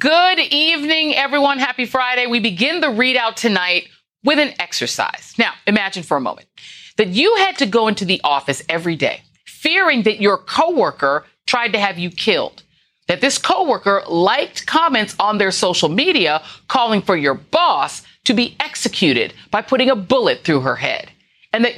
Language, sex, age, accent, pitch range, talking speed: English, female, 40-59, American, 180-275 Hz, 170 wpm